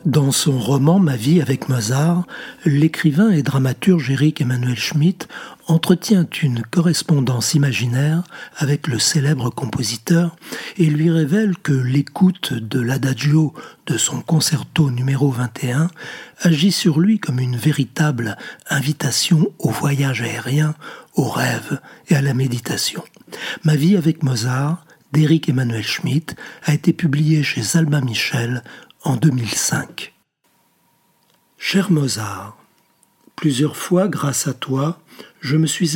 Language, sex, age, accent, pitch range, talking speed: French, male, 60-79, French, 130-165 Hz, 130 wpm